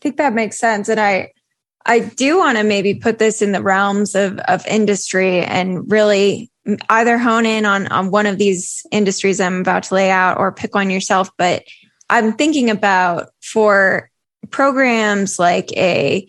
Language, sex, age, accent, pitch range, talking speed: English, female, 10-29, American, 195-220 Hz, 175 wpm